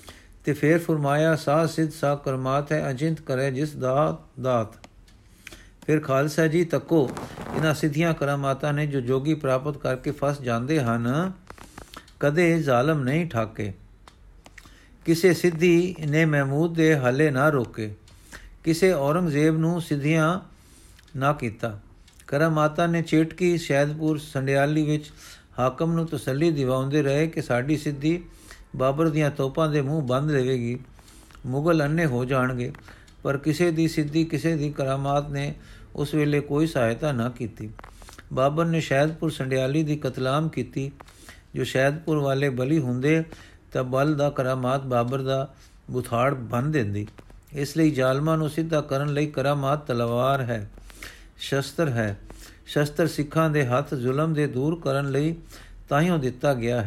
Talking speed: 135 wpm